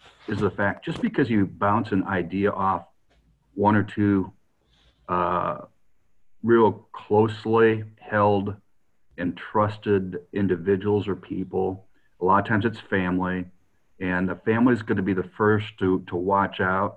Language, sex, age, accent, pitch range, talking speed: English, male, 50-69, American, 95-110 Hz, 140 wpm